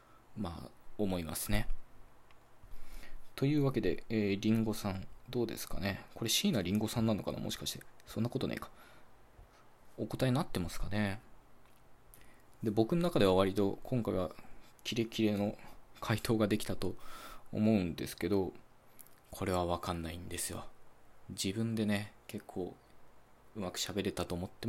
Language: Japanese